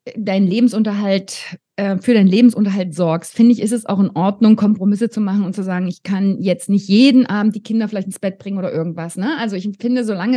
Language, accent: German, German